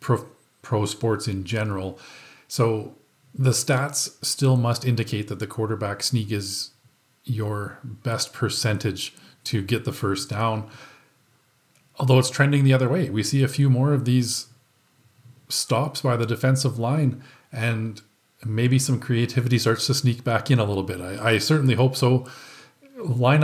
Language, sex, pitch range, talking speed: English, male, 115-135 Hz, 155 wpm